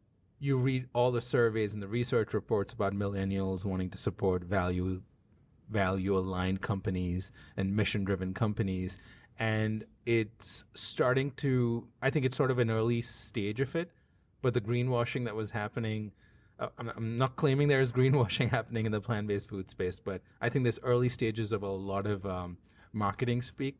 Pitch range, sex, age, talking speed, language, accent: 100-120 Hz, male, 30-49, 170 wpm, English, American